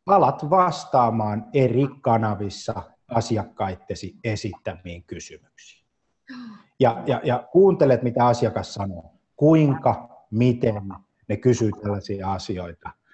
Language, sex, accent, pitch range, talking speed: Finnish, male, native, 105-150 Hz, 90 wpm